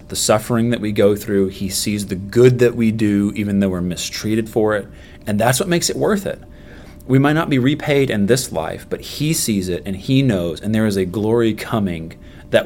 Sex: male